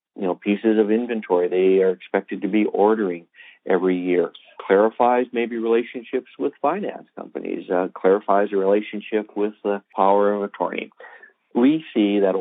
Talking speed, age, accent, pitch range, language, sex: 150 wpm, 50-69, American, 95-115 Hz, English, male